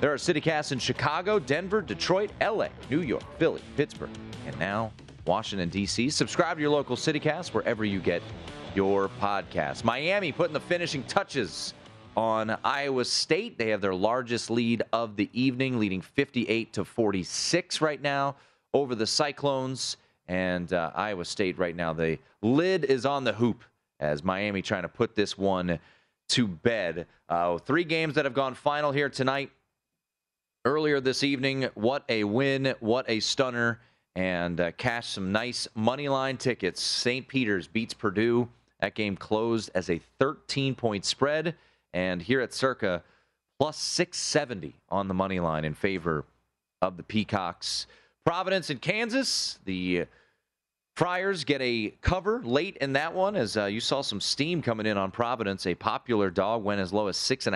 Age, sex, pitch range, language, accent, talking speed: 30-49, male, 95-140 Hz, English, American, 165 wpm